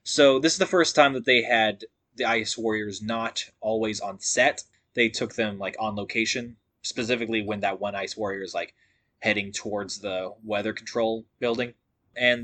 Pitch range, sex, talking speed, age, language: 110-125 Hz, male, 180 wpm, 20-39, English